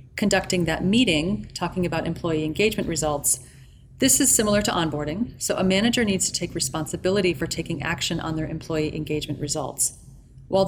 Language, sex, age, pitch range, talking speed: English, female, 30-49, 150-195 Hz, 165 wpm